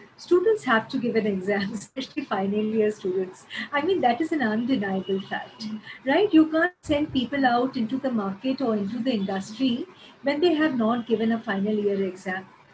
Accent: Indian